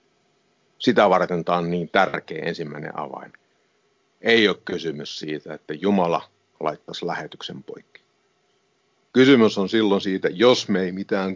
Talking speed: 130 wpm